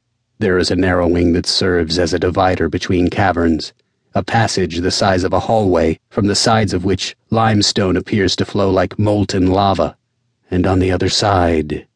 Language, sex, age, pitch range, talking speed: English, male, 40-59, 90-110 Hz, 175 wpm